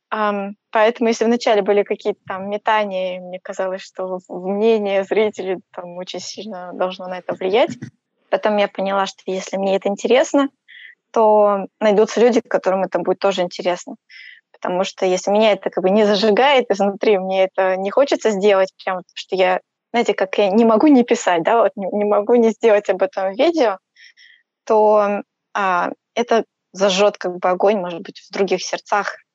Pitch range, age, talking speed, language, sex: 190-225 Hz, 20-39, 170 wpm, Russian, female